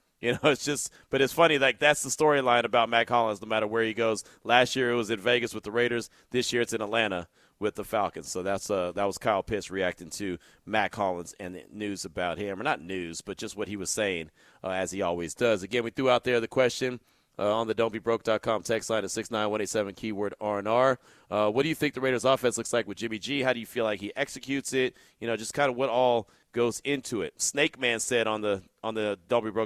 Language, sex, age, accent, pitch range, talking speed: English, male, 30-49, American, 110-140 Hz, 245 wpm